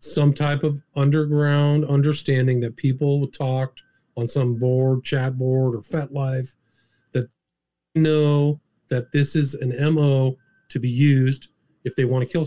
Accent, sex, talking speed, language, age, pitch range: American, male, 145 wpm, English, 40-59, 125-155 Hz